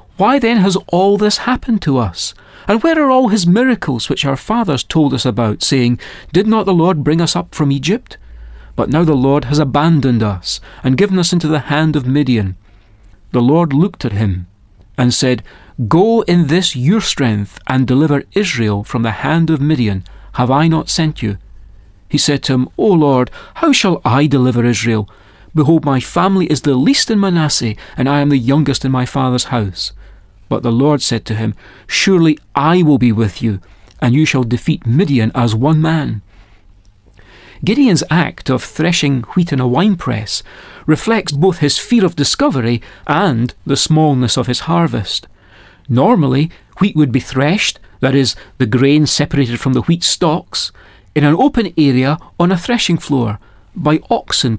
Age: 40-59